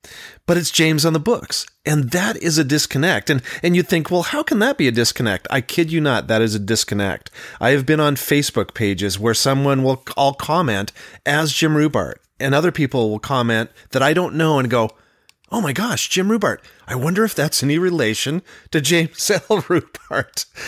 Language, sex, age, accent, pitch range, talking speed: English, male, 30-49, American, 120-170 Hz, 205 wpm